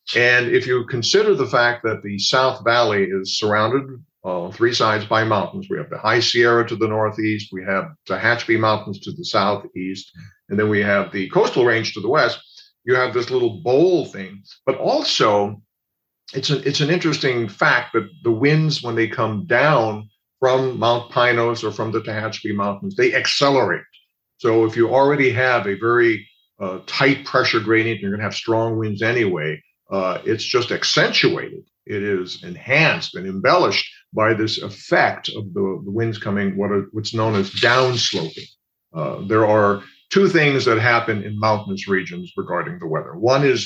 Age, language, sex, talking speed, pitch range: 50-69, English, male, 175 wpm, 105-130 Hz